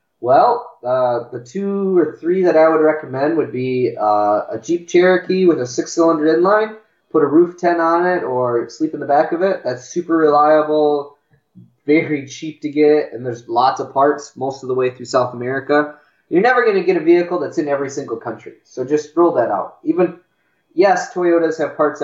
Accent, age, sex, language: American, 20-39, male, English